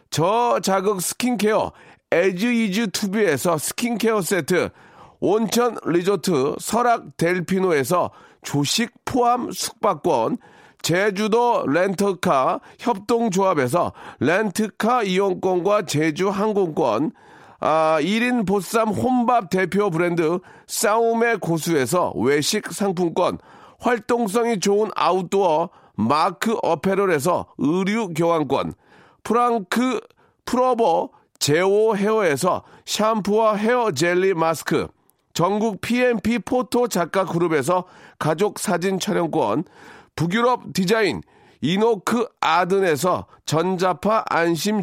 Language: Korean